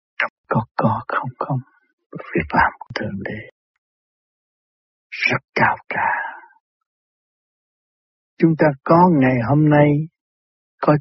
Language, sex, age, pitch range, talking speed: Vietnamese, male, 60-79, 115-145 Hz, 105 wpm